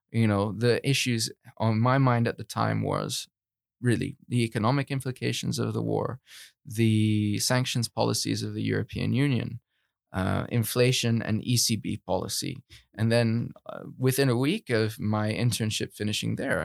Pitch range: 105-125 Hz